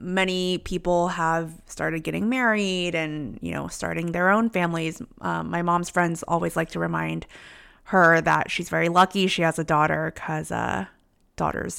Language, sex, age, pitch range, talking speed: English, female, 20-39, 170-215 Hz, 170 wpm